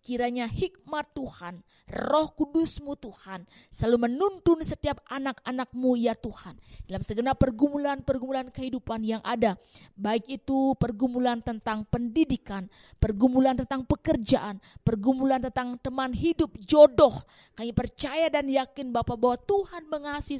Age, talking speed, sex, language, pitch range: 20-39, 120 wpm, female, Indonesian, 235-285 Hz